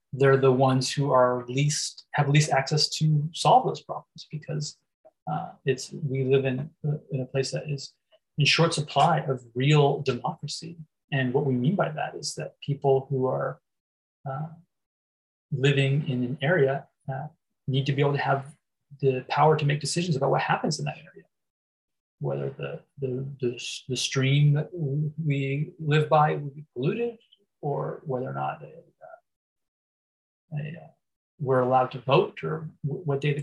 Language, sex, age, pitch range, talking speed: English, male, 30-49, 135-155 Hz, 170 wpm